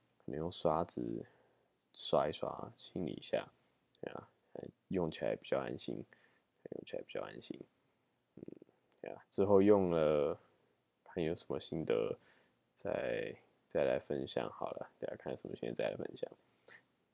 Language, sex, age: Chinese, male, 20-39